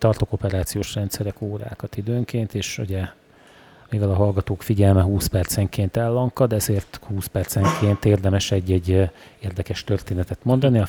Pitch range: 95-110 Hz